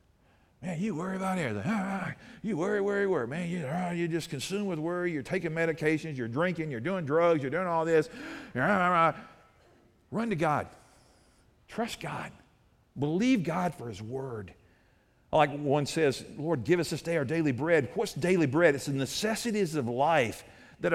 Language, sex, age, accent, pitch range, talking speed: English, male, 50-69, American, 150-215 Hz, 165 wpm